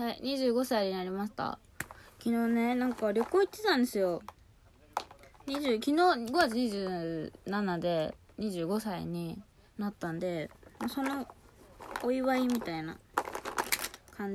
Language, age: Japanese, 20-39